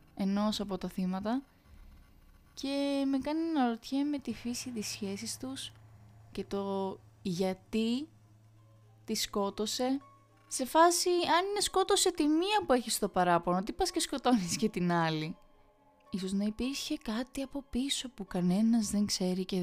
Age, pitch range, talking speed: 20-39, 195-270 Hz, 150 wpm